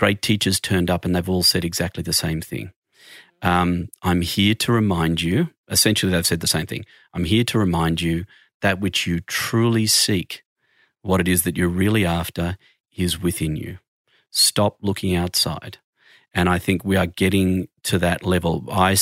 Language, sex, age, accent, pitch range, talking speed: English, male, 40-59, Australian, 85-100 Hz, 180 wpm